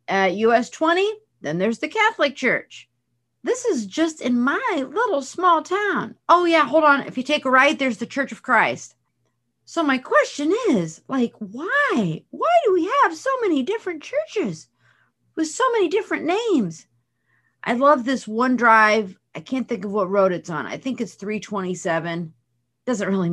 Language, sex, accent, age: English, female, American, 40-59